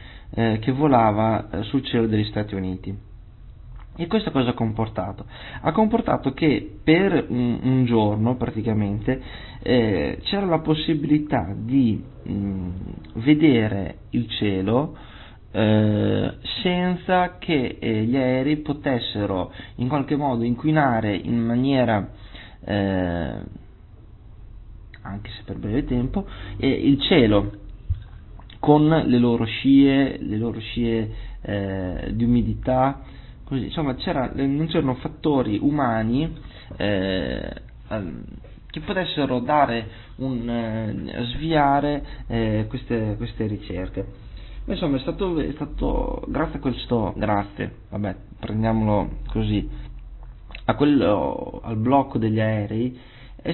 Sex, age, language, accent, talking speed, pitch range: male, 20-39, Italian, native, 110 wpm, 105-140 Hz